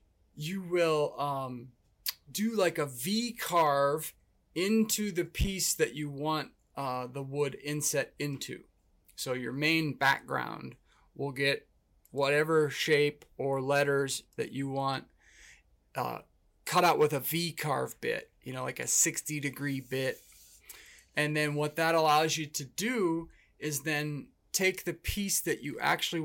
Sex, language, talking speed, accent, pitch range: male, English, 145 wpm, American, 135-165 Hz